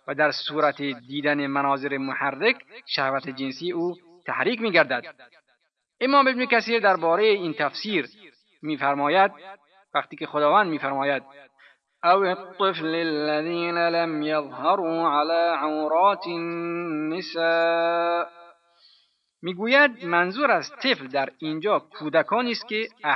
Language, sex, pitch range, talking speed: Persian, male, 140-180 Hz, 100 wpm